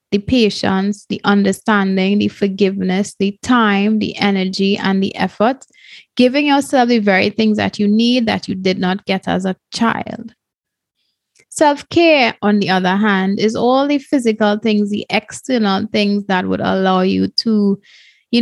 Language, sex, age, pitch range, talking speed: English, female, 20-39, 190-230 Hz, 160 wpm